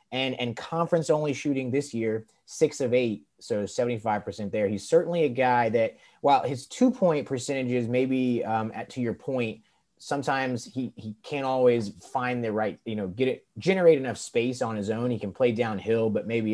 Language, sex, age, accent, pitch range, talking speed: English, male, 30-49, American, 100-130 Hz, 190 wpm